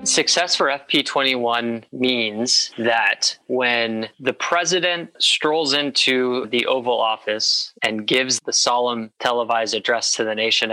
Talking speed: 125 wpm